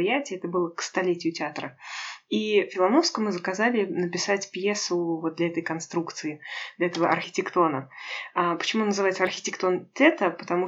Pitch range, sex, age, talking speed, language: 170-210 Hz, female, 20-39, 130 wpm, Russian